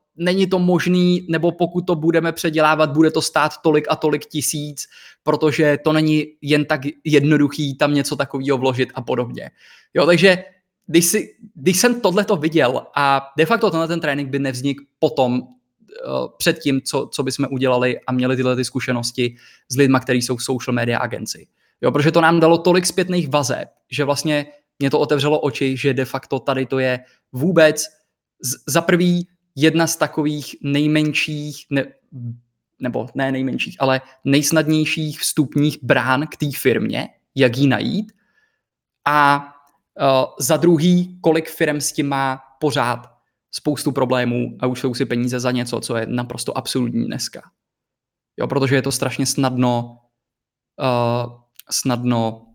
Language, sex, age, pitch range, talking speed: Czech, male, 20-39, 130-160 Hz, 150 wpm